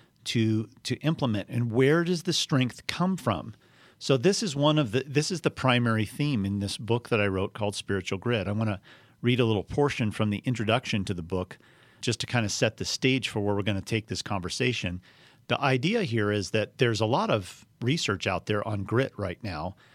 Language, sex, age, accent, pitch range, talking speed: English, male, 40-59, American, 110-135 Hz, 225 wpm